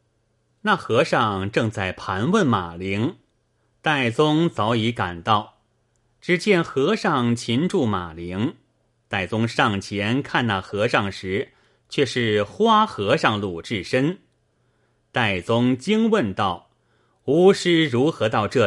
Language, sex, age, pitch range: Chinese, male, 30-49, 110-150 Hz